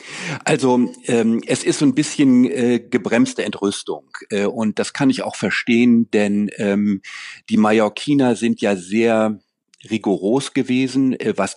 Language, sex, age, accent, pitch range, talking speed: German, male, 40-59, German, 100-125 Hz, 145 wpm